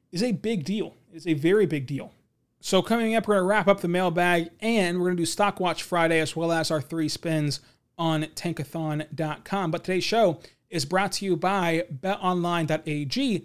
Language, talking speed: English, 190 wpm